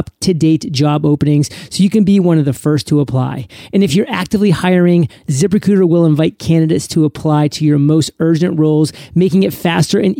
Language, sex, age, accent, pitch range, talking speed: English, male, 30-49, American, 150-180 Hz, 195 wpm